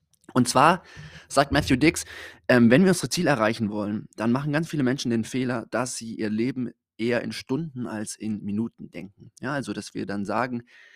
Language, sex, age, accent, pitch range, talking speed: German, male, 20-39, German, 105-130 Hz, 195 wpm